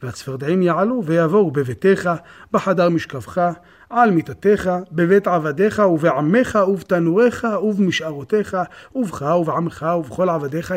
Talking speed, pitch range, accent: 95 wpm, 150-200 Hz, native